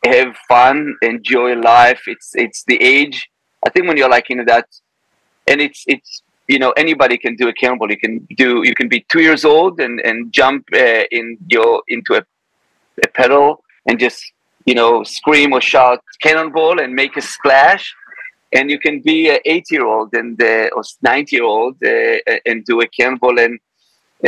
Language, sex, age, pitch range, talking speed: English, male, 40-59, 120-160 Hz, 190 wpm